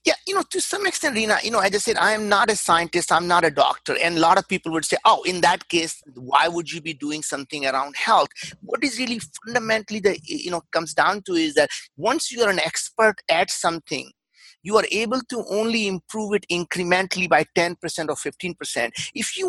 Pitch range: 170-235 Hz